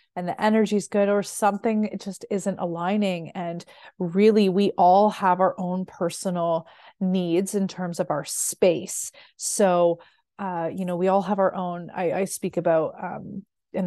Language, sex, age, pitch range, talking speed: English, female, 30-49, 180-210 Hz, 175 wpm